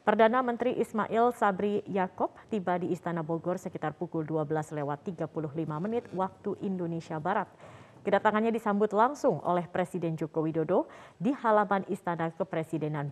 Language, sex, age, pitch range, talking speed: Indonesian, female, 30-49, 165-210 Hz, 125 wpm